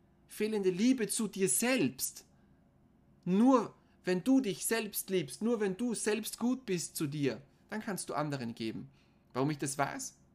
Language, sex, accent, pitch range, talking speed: German, male, German, 140-215 Hz, 160 wpm